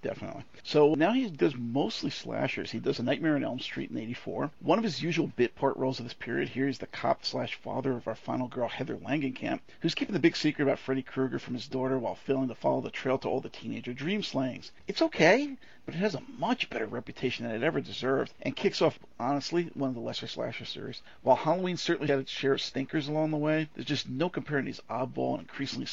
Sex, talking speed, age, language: male, 235 wpm, 50-69, English